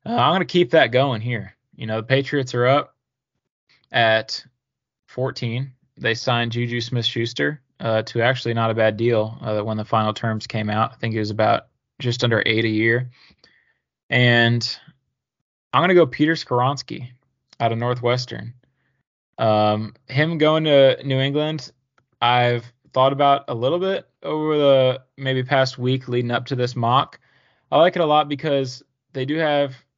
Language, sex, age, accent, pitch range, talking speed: English, male, 20-39, American, 115-135 Hz, 170 wpm